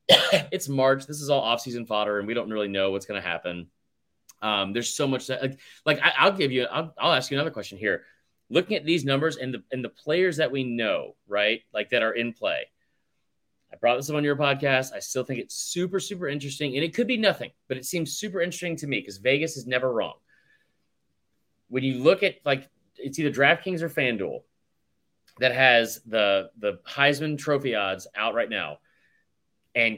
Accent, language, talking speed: American, English, 205 wpm